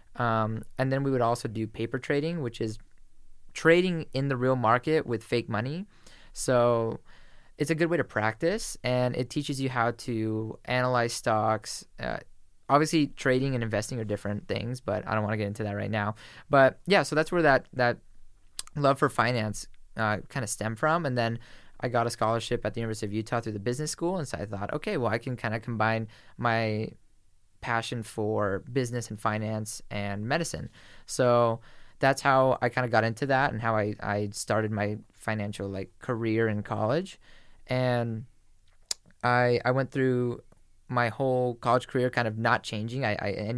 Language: English